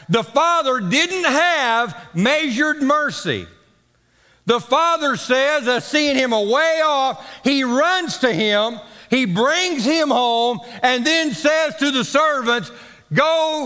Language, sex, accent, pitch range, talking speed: English, male, American, 215-305 Hz, 125 wpm